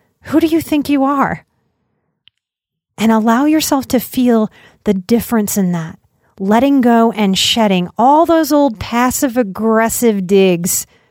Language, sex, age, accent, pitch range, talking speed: English, female, 30-49, American, 195-265 Hz, 135 wpm